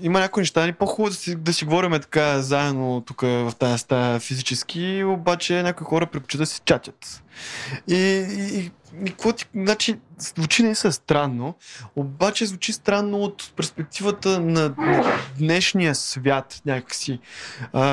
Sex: male